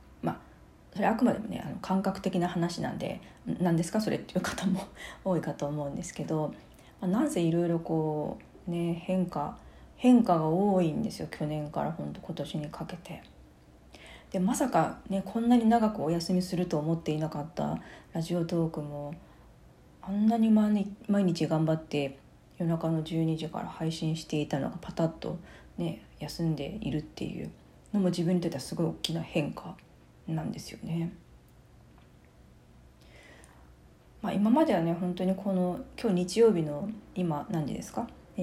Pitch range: 150-195 Hz